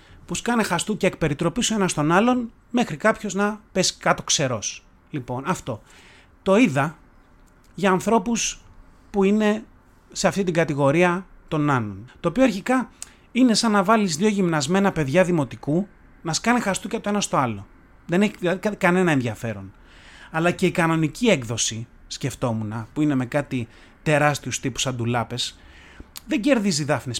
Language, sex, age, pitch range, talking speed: Greek, male, 30-49, 135-205 Hz, 150 wpm